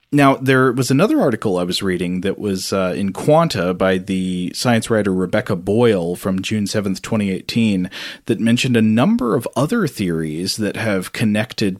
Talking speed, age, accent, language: 170 wpm, 30-49, American, English